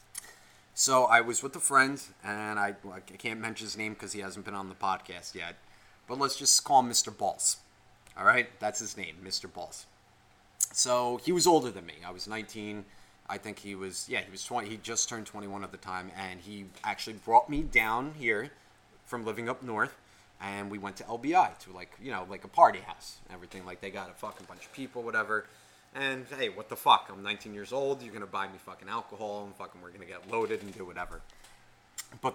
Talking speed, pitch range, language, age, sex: 225 wpm, 100-130 Hz, English, 30-49, male